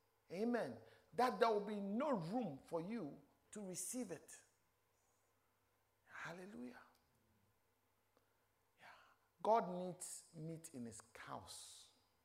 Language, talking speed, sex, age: English, 100 wpm, male, 50-69